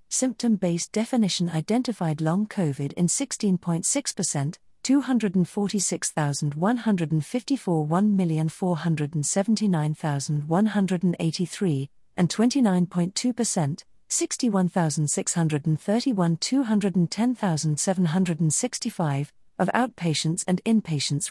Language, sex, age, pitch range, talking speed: English, female, 50-69, 160-210 Hz, 50 wpm